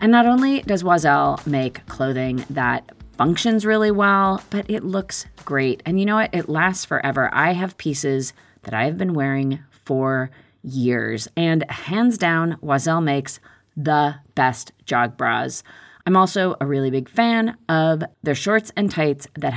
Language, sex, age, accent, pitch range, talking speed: English, female, 30-49, American, 135-205 Hz, 160 wpm